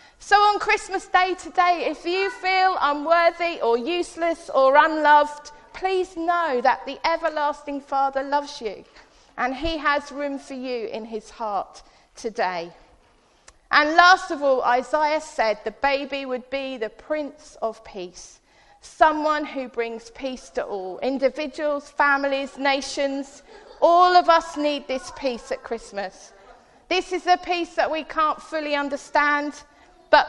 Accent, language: British, English